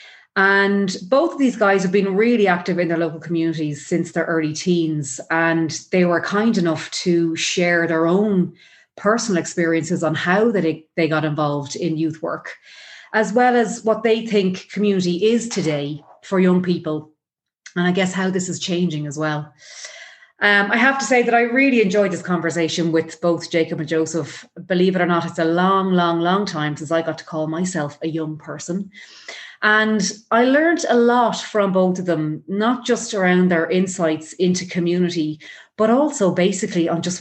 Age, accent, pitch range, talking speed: 30-49, Irish, 165-205 Hz, 180 wpm